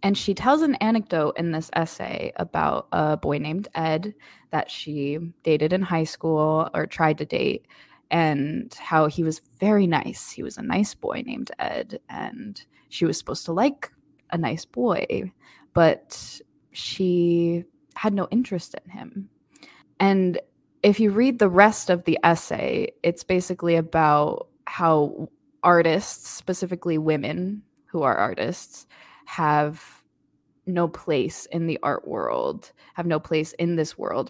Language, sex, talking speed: English, female, 145 wpm